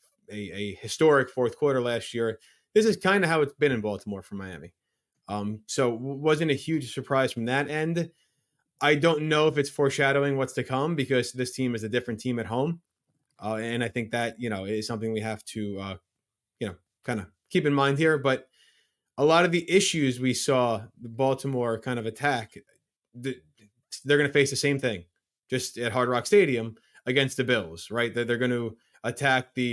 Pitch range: 115-145 Hz